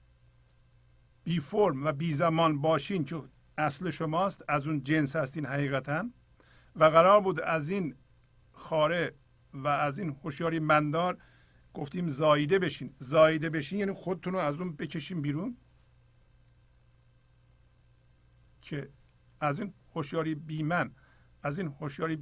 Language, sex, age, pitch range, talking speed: Persian, male, 50-69, 120-165 Hz, 120 wpm